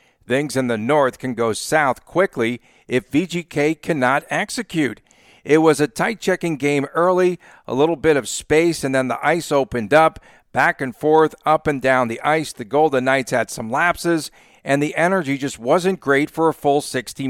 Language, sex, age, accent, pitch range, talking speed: English, male, 50-69, American, 130-155 Hz, 185 wpm